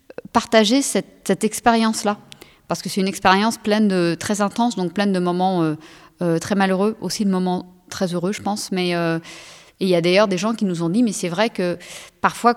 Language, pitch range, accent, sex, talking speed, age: French, 175-220 Hz, French, female, 215 wpm, 30-49